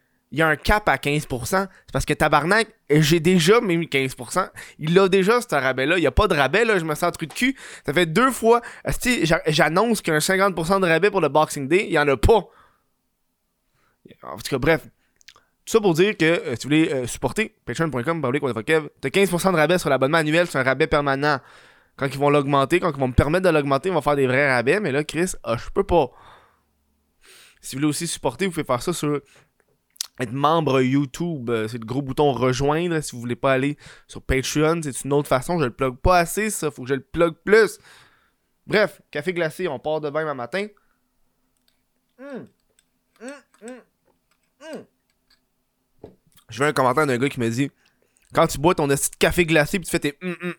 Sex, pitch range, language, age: male, 135-180 Hz, French, 20-39